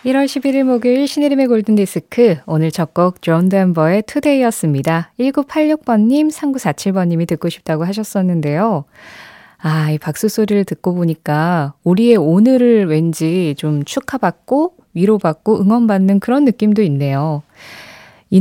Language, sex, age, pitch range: Korean, female, 20-39, 160-245 Hz